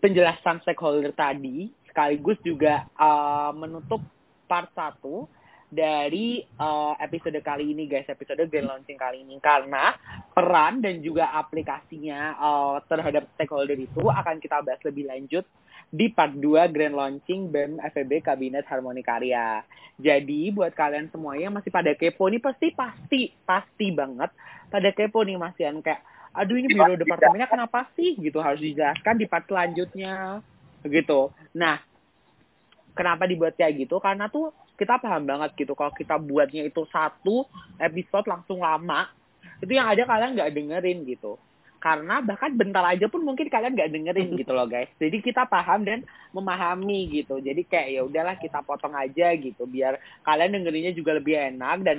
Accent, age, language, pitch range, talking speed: native, 20-39, Indonesian, 145-190 Hz, 155 wpm